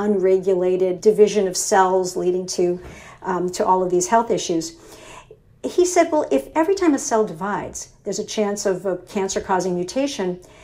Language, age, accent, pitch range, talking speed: English, 50-69, American, 195-255 Hz, 160 wpm